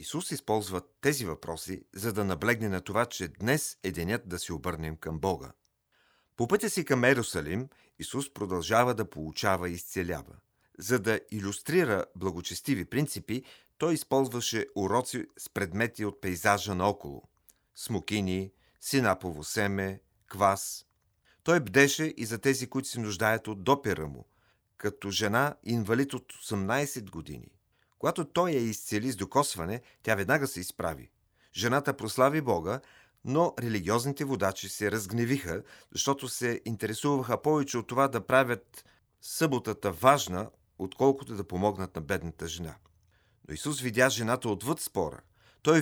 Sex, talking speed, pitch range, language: male, 135 wpm, 95-130 Hz, Bulgarian